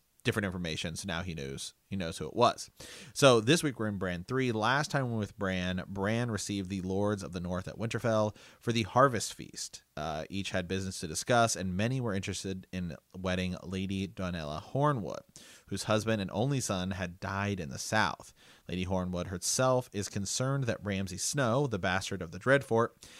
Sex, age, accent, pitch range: male, 30-49, American, 95-115 Hz